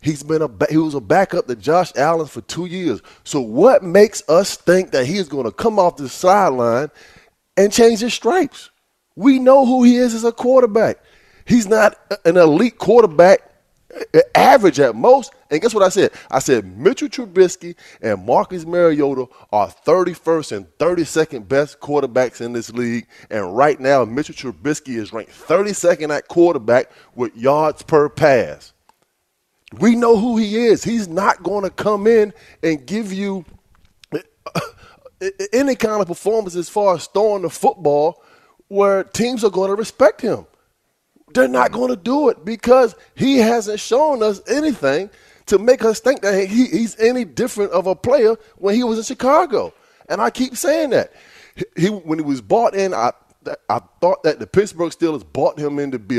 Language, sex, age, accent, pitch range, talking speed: English, male, 20-39, American, 150-230 Hz, 175 wpm